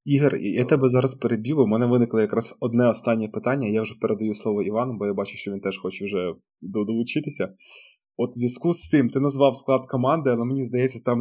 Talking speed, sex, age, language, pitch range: 210 wpm, male, 20-39, Ukrainian, 115-135 Hz